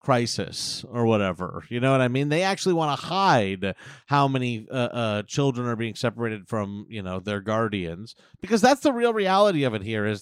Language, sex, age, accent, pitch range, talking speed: English, male, 30-49, American, 115-150 Hz, 205 wpm